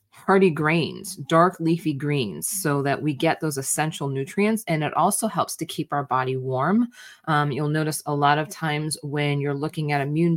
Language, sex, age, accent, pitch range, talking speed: English, female, 20-39, American, 140-165 Hz, 190 wpm